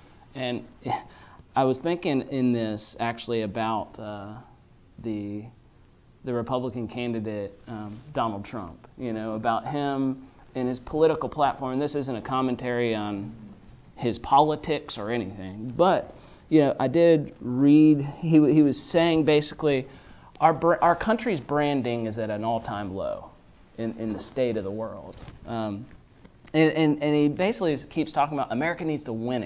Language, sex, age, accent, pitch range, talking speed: English, male, 30-49, American, 115-150 Hz, 150 wpm